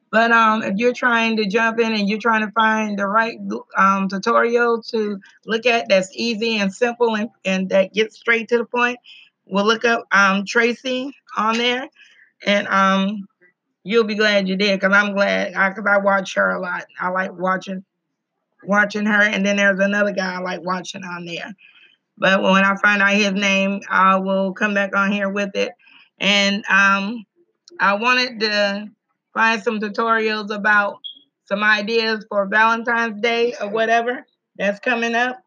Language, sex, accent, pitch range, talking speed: English, female, American, 200-235 Hz, 175 wpm